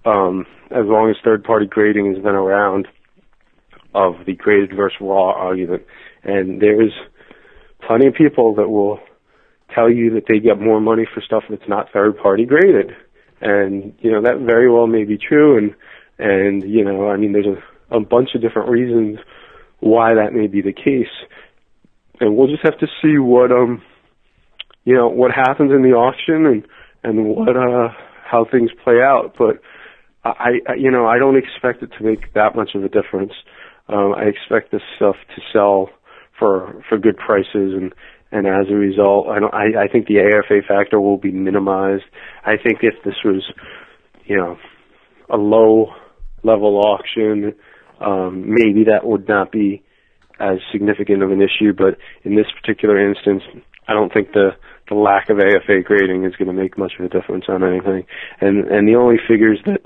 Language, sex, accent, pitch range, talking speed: English, male, American, 100-115 Hz, 180 wpm